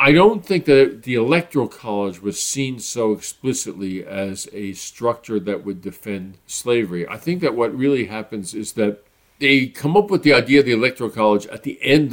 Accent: American